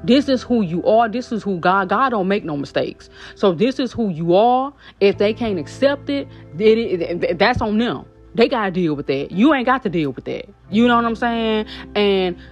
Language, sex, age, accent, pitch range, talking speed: English, female, 30-49, American, 170-240 Hz, 245 wpm